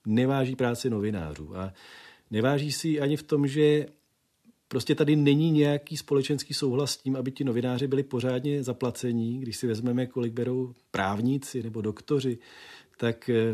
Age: 40-59